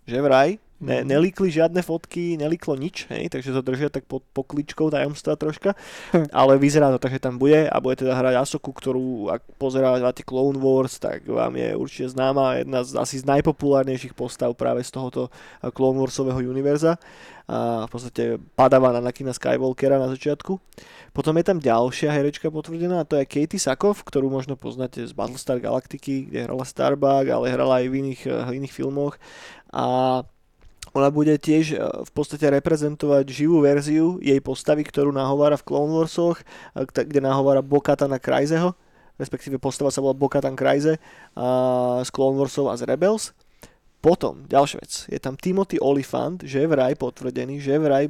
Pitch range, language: 130-150 Hz, Slovak